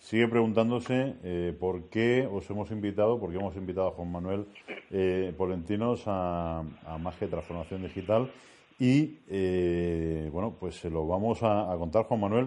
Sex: male